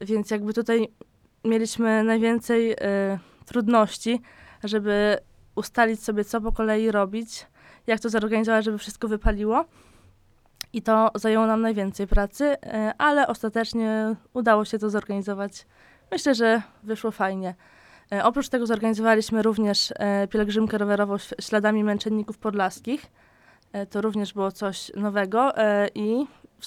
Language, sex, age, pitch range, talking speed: Polish, female, 20-39, 205-225 Hz, 115 wpm